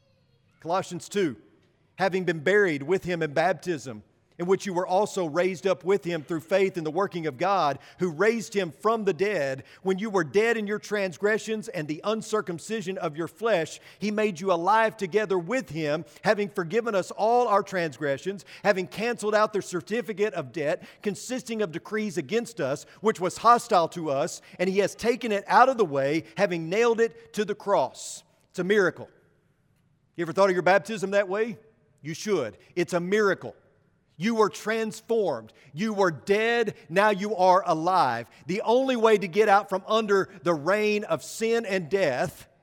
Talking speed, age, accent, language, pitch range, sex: 180 wpm, 40-59, American, English, 155-210 Hz, male